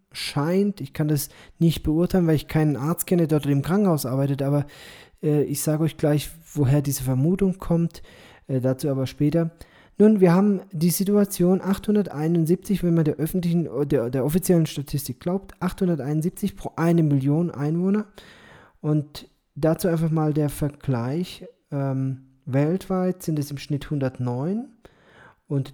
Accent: German